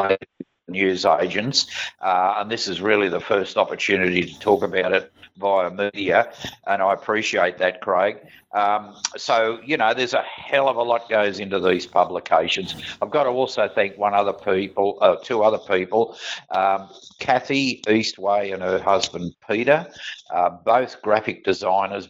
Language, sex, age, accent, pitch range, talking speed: English, male, 50-69, Australian, 95-110 Hz, 160 wpm